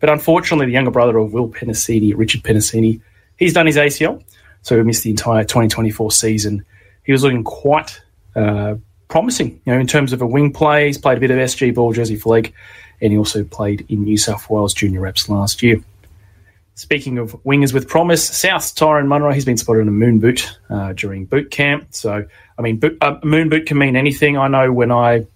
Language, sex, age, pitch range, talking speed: English, male, 30-49, 105-135 Hz, 215 wpm